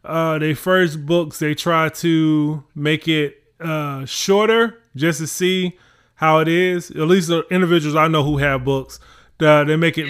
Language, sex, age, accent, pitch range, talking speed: English, male, 20-39, American, 145-170 Hz, 180 wpm